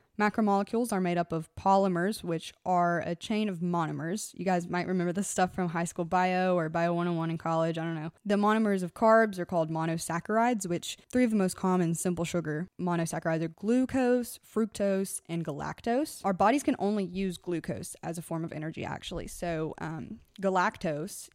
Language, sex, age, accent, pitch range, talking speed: English, female, 20-39, American, 170-200 Hz, 185 wpm